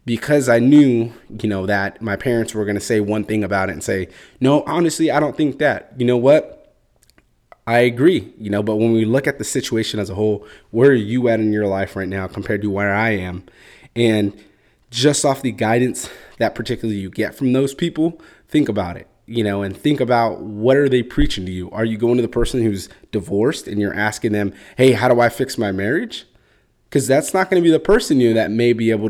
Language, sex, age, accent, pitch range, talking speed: English, male, 20-39, American, 100-125 Hz, 235 wpm